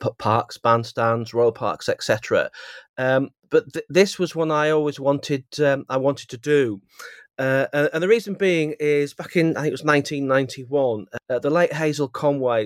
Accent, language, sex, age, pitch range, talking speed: British, English, male, 30-49, 125-165 Hz, 175 wpm